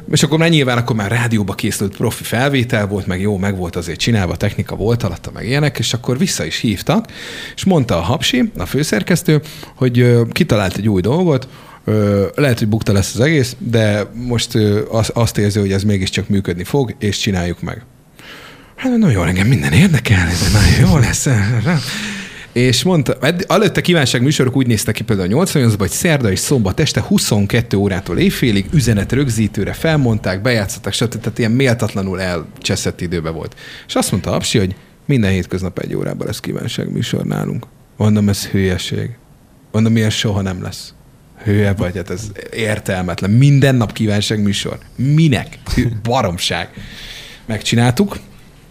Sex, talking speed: male, 155 wpm